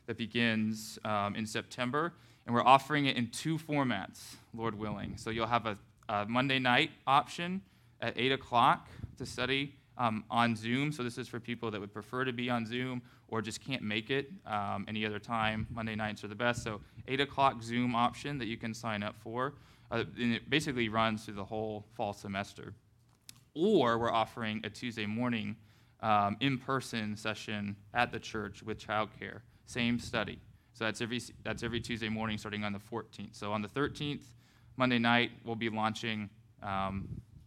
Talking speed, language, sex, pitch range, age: 180 wpm, English, male, 110-125 Hz, 20-39